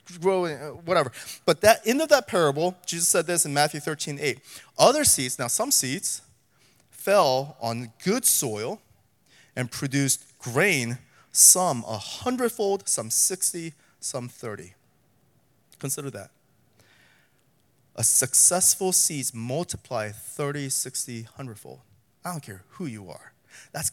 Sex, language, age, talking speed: male, English, 30-49, 130 wpm